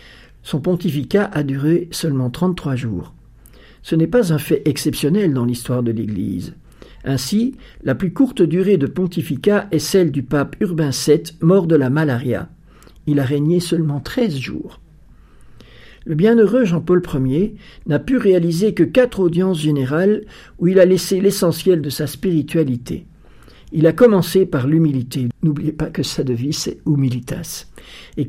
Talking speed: 155 wpm